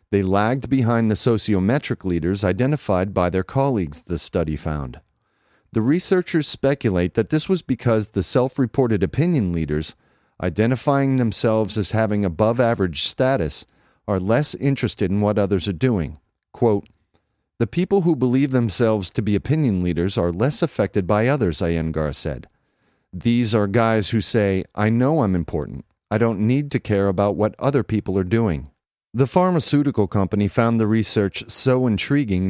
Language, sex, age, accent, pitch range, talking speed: English, male, 40-59, American, 95-120 Hz, 155 wpm